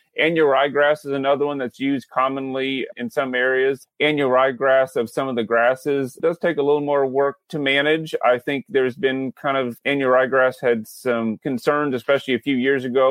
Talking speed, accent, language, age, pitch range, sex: 190 wpm, American, English, 30-49, 115-135 Hz, male